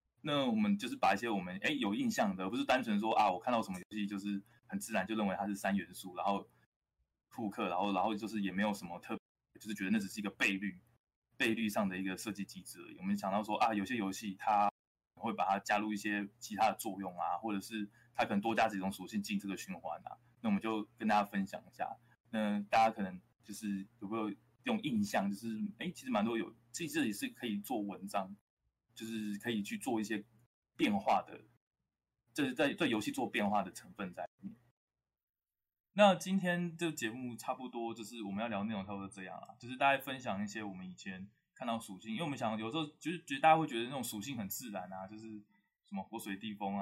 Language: Chinese